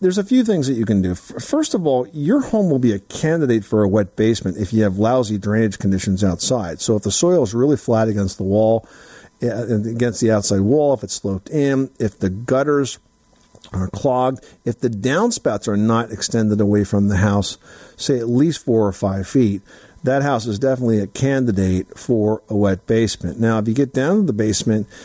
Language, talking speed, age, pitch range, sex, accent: English, 200 wpm, 50-69, 105-130 Hz, male, American